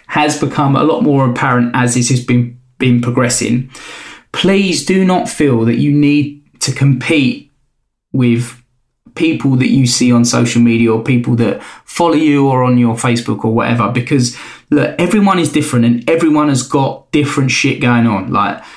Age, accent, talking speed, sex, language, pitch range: 20-39, British, 175 wpm, male, English, 120-145 Hz